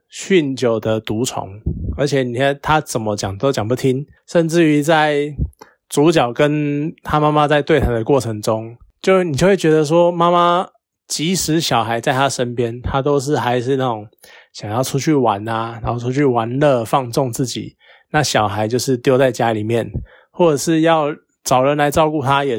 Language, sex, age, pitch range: Chinese, male, 20-39, 125-165 Hz